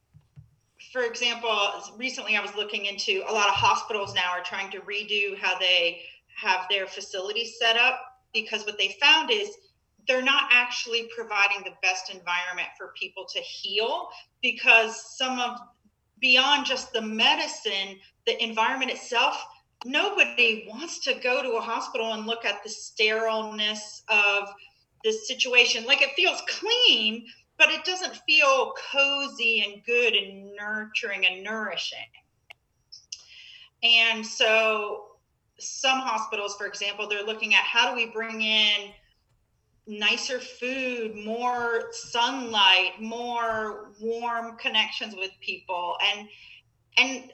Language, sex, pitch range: English, female, 205-255 Hz